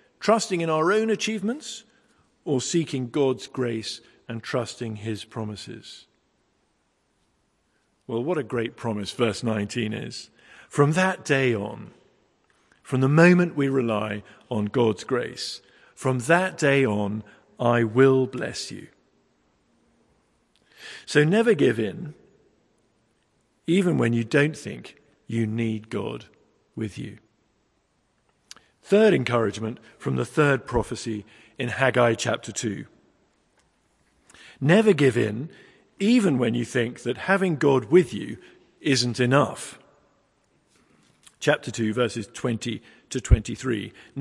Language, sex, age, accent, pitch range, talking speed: English, male, 50-69, British, 115-160 Hz, 115 wpm